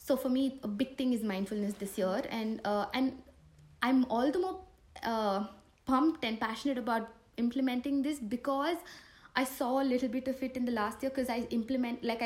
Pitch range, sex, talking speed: 215-270 Hz, female, 195 wpm